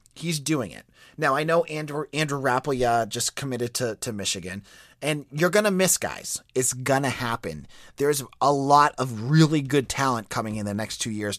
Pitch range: 115-155 Hz